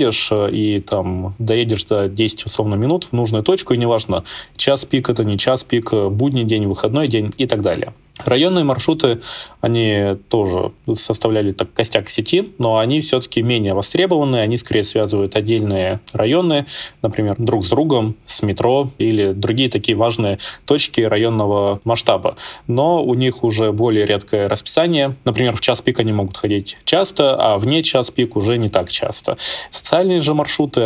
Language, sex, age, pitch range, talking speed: Russian, male, 20-39, 105-125 Hz, 160 wpm